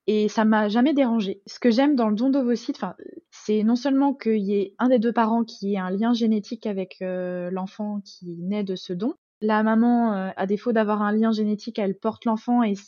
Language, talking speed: French, 225 wpm